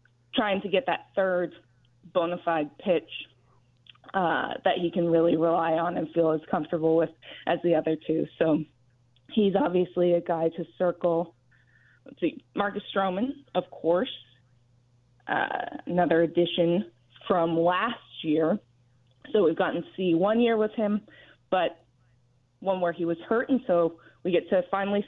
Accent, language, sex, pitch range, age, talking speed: American, English, female, 140-200 Hz, 20-39, 155 wpm